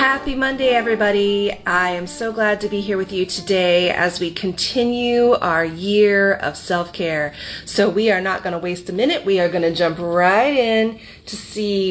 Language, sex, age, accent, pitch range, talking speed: English, female, 30-49, American, 170-215 Hz, 190 wpm